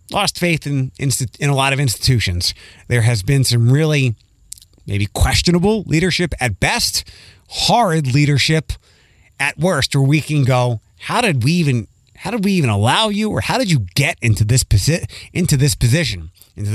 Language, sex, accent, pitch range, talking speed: English, male, American, 105-140 Hz, 170 wpm